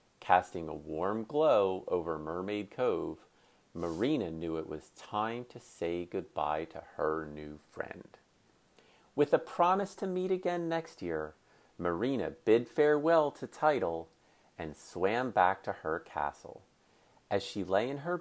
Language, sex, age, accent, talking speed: English, male, 40-59, American, 140 wpm